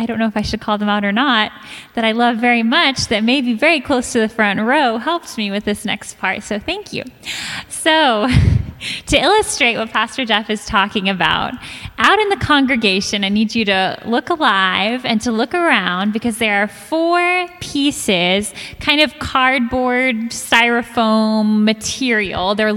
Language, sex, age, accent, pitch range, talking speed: English, female, 10-29, American, 215-300 Hz, 180 wpm